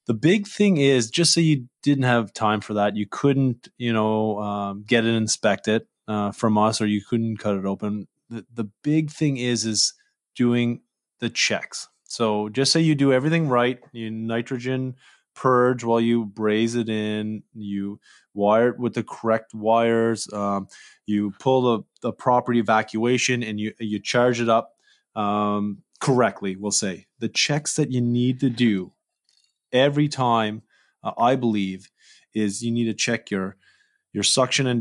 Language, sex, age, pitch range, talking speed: English, male, 20-39, 105-130 Hz, 170 wpm